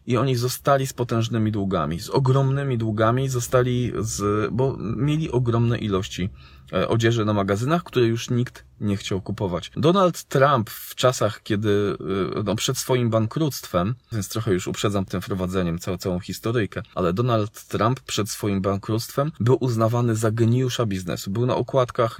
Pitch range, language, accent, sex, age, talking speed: 100-125 Hz, Polish, native, male, 20-39, 150 wpm